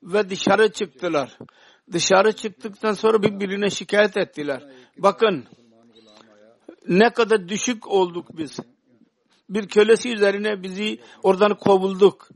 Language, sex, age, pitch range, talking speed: Turkish, male, 60-79, 170-220 Hz, 100 wpm